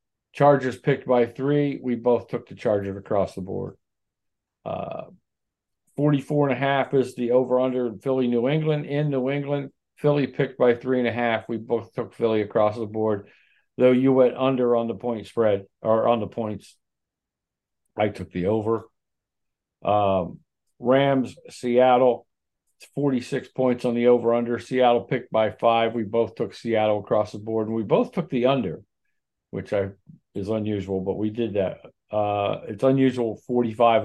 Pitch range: 110-135 Hz